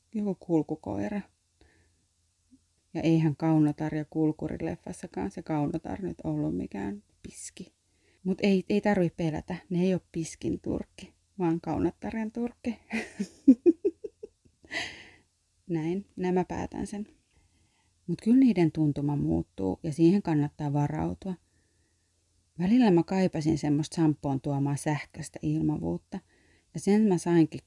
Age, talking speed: 30-49, 110 wpm